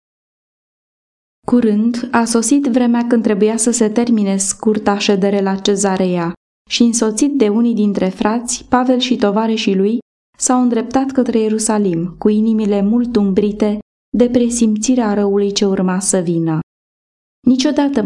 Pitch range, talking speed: 195-240 Hz, 130 wpm